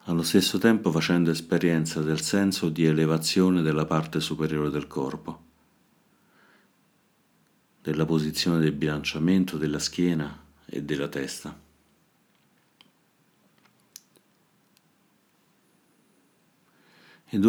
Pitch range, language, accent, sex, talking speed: 75-90 Hz, Italian, native, male, 80 wpm